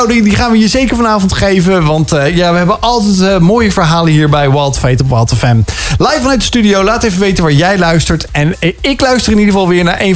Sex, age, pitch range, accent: male, 40-59, 140-200 Hz, Dutch